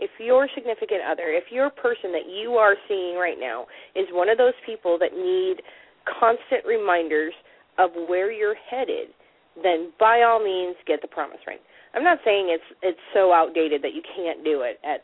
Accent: American